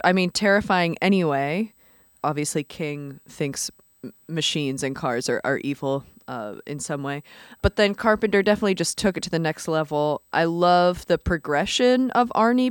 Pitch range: 150-200 Hz